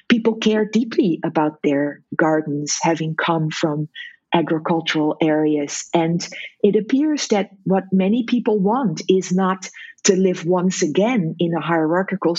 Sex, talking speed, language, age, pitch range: female, 135 wpm, English, 50-69, 160-205 Hz